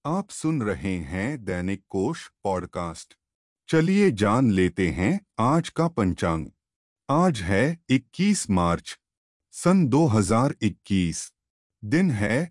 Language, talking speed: Hindi, 105 wpm